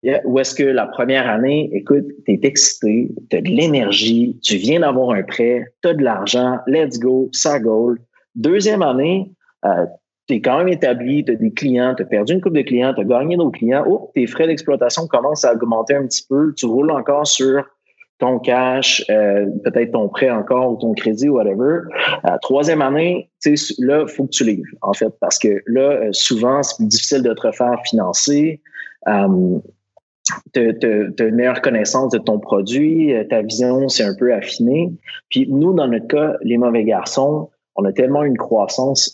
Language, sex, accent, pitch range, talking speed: French, male, Canadian, 115-150 Hz, 185 wpm